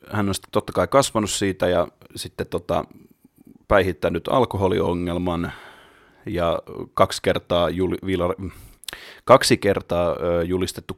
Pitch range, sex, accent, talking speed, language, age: 85-105 Hz, male, native, 110 wpm, Finnish, 30-49